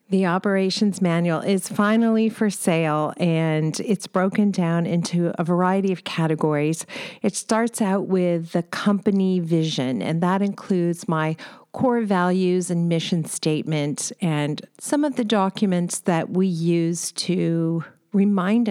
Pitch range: 165-205 Hz